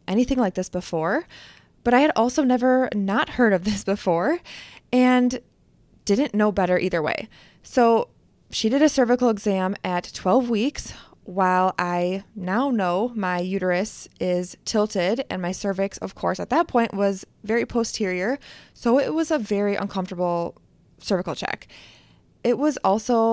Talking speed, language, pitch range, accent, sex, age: 150 wpm, English, 195-250 Hz, American, female, 20-39